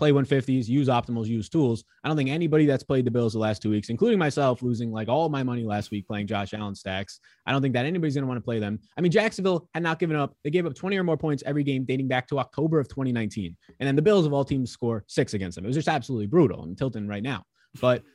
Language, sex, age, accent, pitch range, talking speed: English, male, 20-39, American, 110-145 Hz, 280 wpm